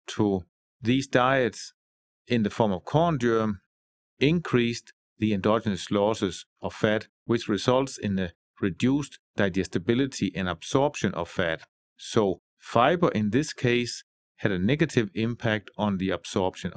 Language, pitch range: English, 105-135 Hz